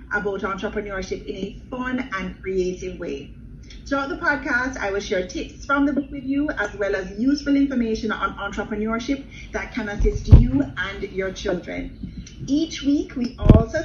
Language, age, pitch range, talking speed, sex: English, 30-49, 200-270 Hz, 165 wpm, female